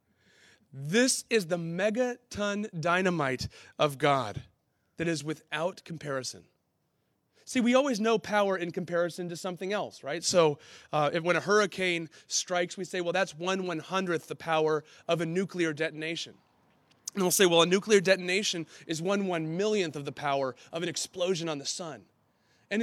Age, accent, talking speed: 30-49, American, 165 wpm